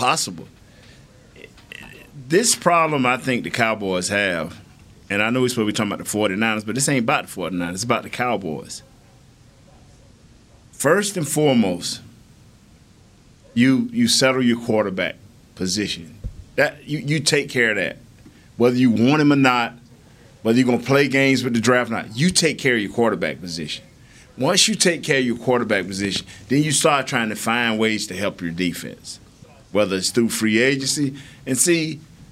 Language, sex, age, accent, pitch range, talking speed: English, male, 50-69, American, 105-135 Hz, 175 wpm